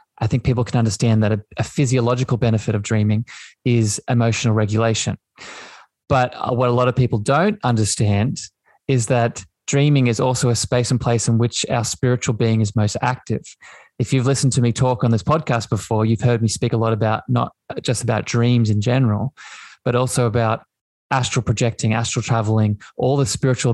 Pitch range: 115-130 Hz